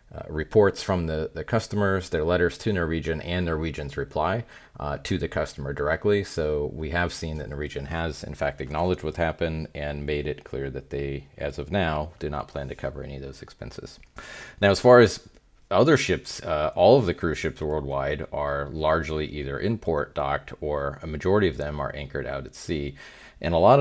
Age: 30-49